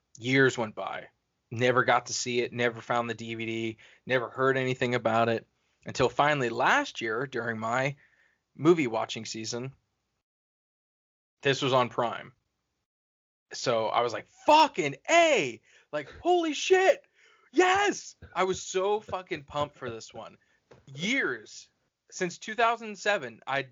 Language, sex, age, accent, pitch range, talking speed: English, male, 20-39, American, 125-175 Hz, 130 wpm